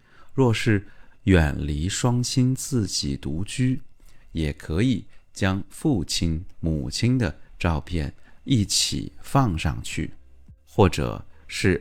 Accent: native